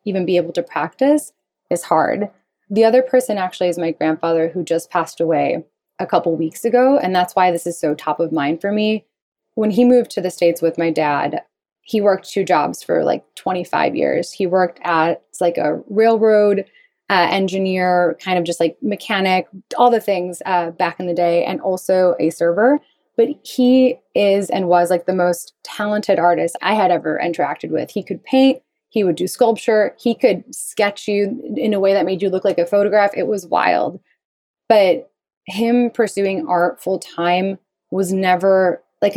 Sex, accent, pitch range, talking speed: female, American, 175-210 Hz, 190 wpm